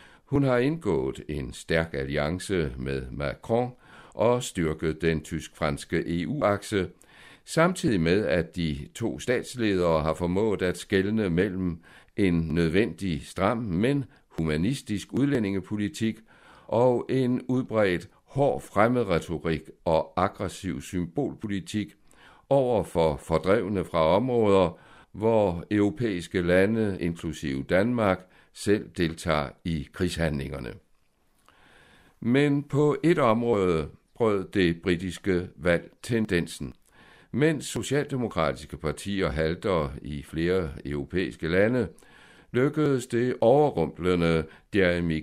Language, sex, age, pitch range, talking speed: Danish, male, 60-79, 80-110 Hz, 95 wpm